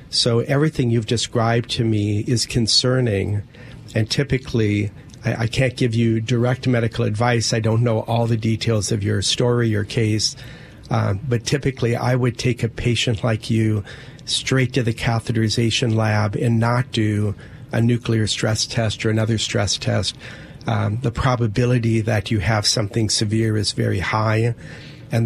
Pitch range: 110-125 Hz